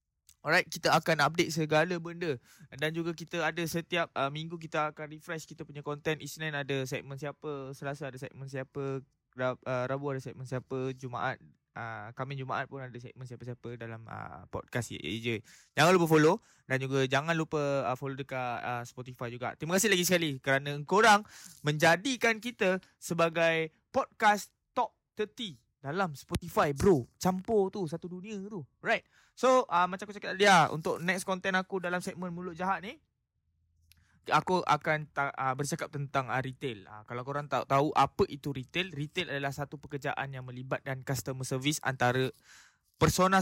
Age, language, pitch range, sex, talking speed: 20-39, Malay, 130-175 Hz, male, 165 wpm